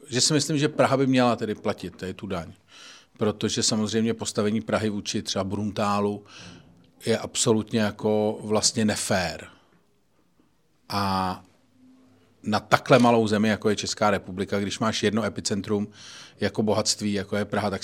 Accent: native